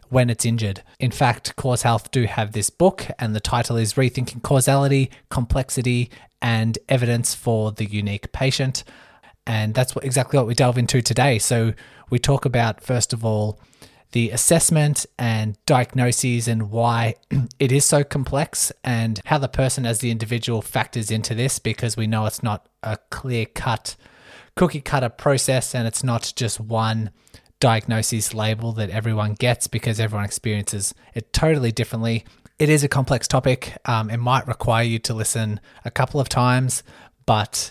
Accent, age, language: Australian, 20-39, English